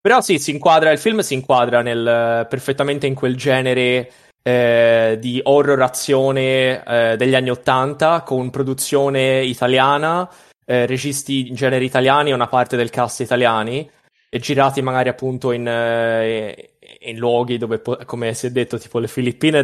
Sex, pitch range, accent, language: male, 125-145 Hz, native, Italian